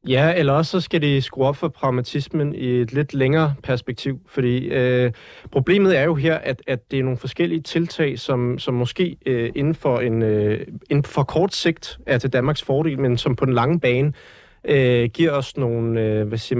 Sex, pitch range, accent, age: male, 120-155 Hz, native, 30-49